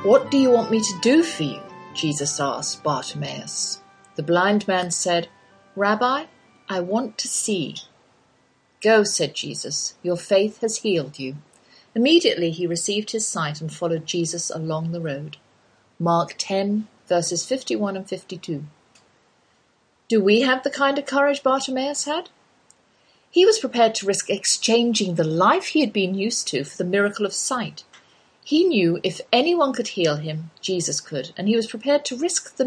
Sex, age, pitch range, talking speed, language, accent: female, 40-59, 170-240 Hz, 165 wpm, English, British